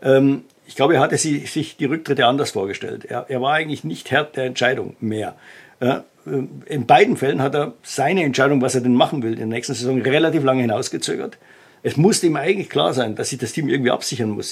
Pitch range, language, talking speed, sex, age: 130-150 Hz, German, 205 wpm, male, 50-69